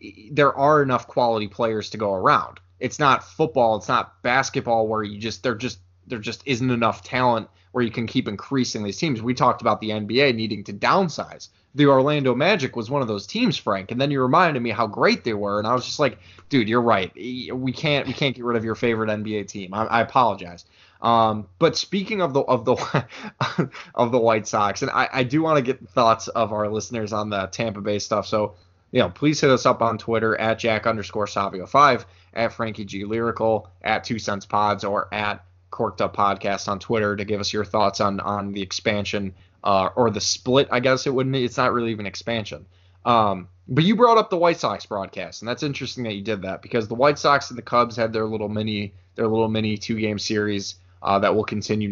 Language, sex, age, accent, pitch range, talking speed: English, male, 20-39, American, 100-125 Hz, 225 wpm